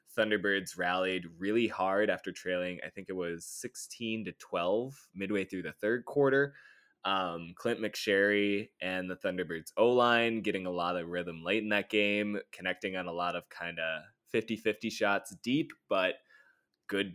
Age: 20-39